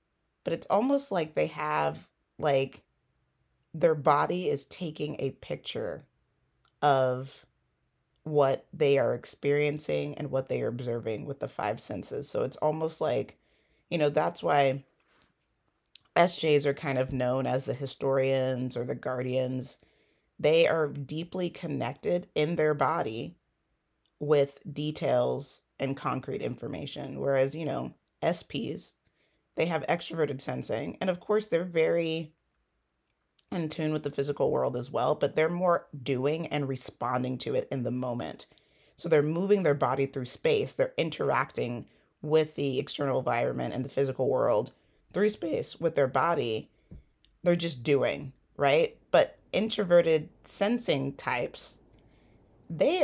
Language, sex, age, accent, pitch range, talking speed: English, female, 30-49, American, 135-170 Hz, 135 wpm